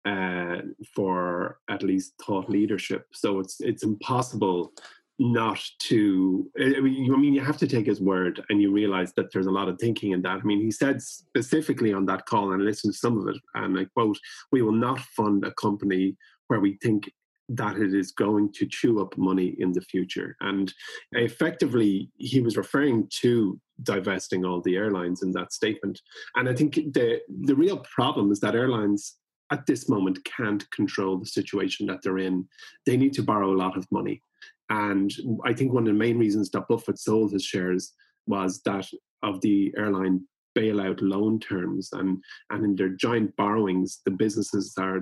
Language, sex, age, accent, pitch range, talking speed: English, male, 30-49, Irish, 95-115 Hz, 185 wpm